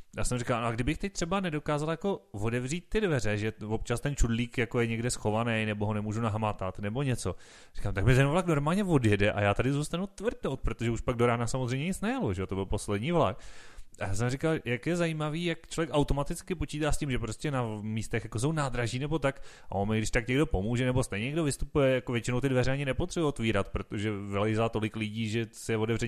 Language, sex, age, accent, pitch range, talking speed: Czech, male, 30-49, native, 110-145 Hz, 230 wpm